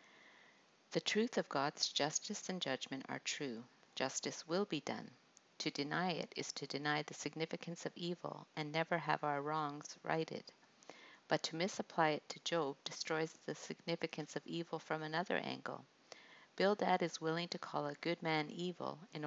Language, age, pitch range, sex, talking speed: English, 50-69, 145-175 Hz, female, 165 wpm